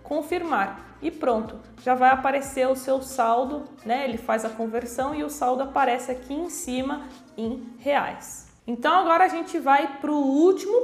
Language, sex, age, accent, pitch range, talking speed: Portuguese, female, 20-39, Brazilian, 235-300 Hz, 170 wpm